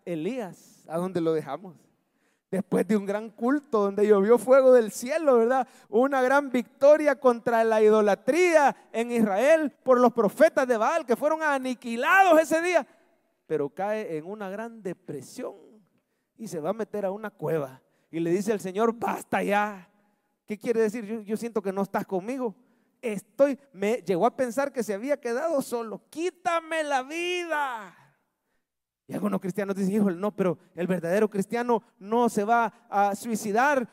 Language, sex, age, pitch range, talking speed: English, male, 30-49, 200-255 Hz, 165 wpm